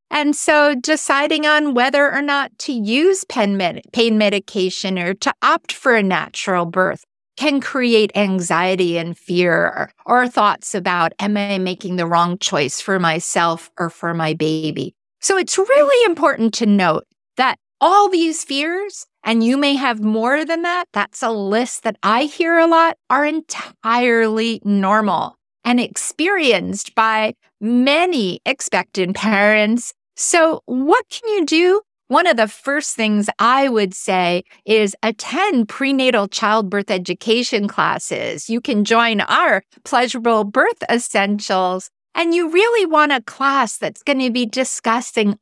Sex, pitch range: female, 200-275 Hz